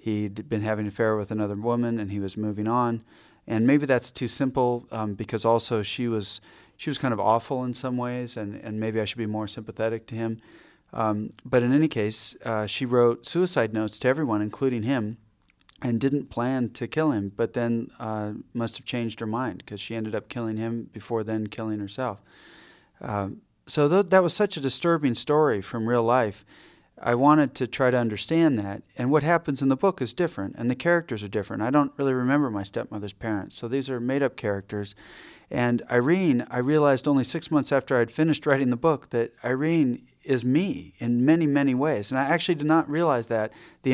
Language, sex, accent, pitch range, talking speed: English, male, American, 110-135 Hz, 210 wpm